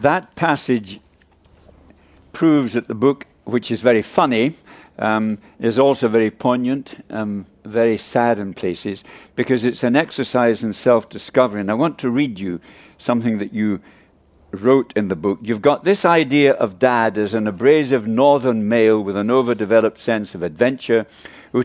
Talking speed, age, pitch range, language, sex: 160 wpm, 60-79, 110-140 Hz, English, male